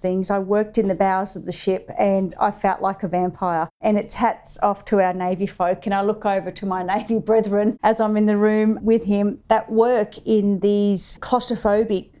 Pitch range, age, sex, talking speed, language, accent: 180-205 Hz, 40-59, female, 210 wpm, English, Australian